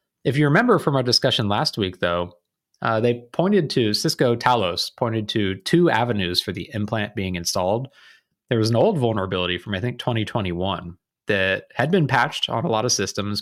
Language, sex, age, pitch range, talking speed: English, male, 30-49, 95-125 Hz, 190 wpm